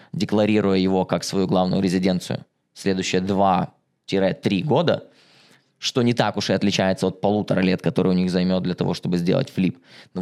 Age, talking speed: 20-39, 165 wpm